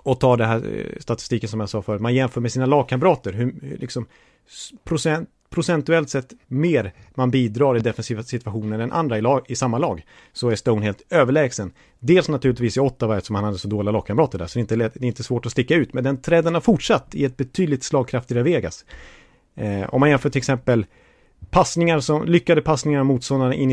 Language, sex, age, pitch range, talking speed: Swedish, male, 30-49, 115-150 Hz, 200 wpm